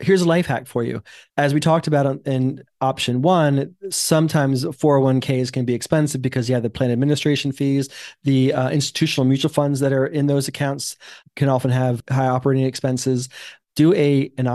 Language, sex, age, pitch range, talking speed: English, male, 30-49, 125-150 Hz, 175 wpm